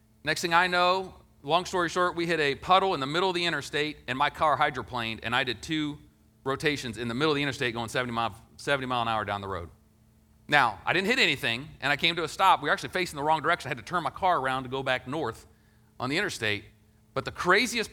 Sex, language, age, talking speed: male, English, 40-59, 260 wpm